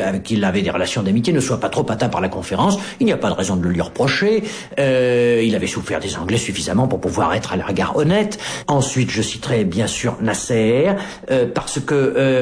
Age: 50-69